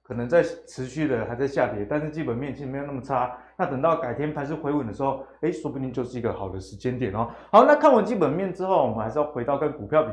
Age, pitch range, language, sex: 20-39, 125-165 Hz, Chinese, male